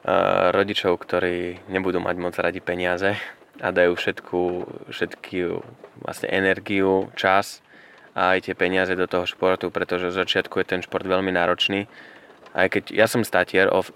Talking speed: 140 wpm